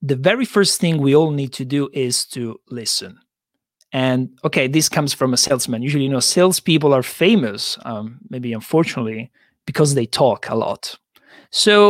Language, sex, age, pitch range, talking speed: English, male, 40-59, 130-180 Hz, 170 wpm